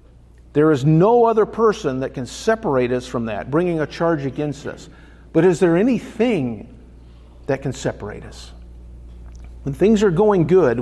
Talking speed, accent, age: 160 wpm, American, 50-69